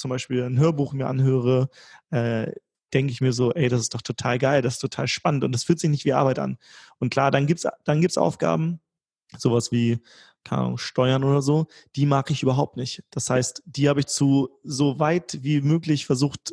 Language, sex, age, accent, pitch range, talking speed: German, male, 30-49, German, 125-140 Hz, 210 wpm